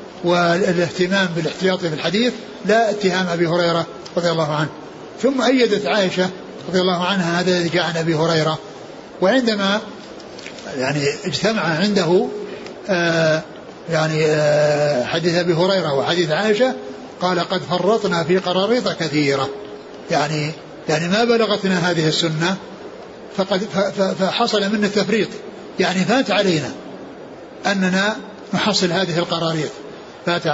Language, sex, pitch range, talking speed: Arabic, male, 165-200 Hz, 115 wpm